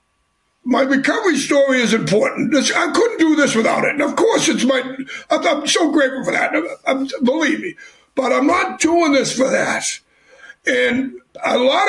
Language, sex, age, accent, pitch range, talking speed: English, male, 60-79, American, 255-305 Hz, 165 wpm